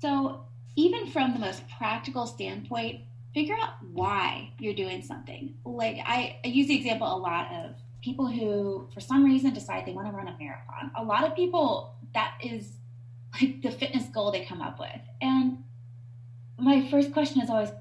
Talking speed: 180 wpm